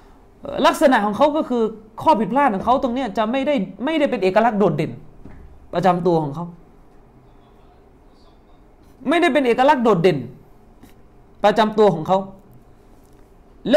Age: 30-49